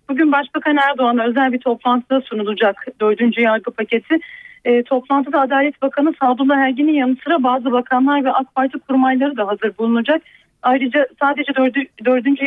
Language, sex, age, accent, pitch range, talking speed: Turkish, female, 40-59, native, 230-280 Hz, 140 wpm